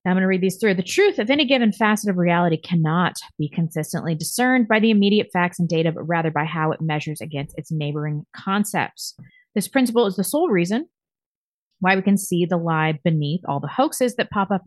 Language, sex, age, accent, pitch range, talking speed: English, female, 30-49, American, 155-195 Hz, 220 wpm